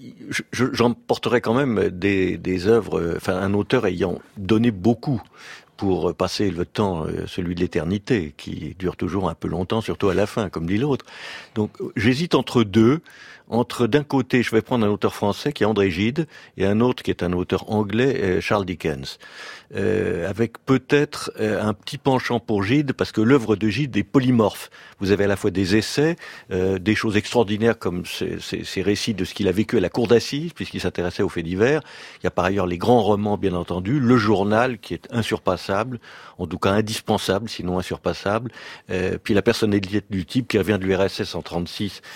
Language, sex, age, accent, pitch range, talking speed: French, male, 50-69, French, 95-120 Hz, 195 wpm